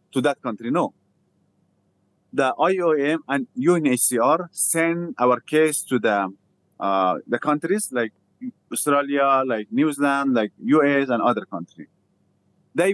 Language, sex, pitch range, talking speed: English, male, 120-165 Hz, 125 wpm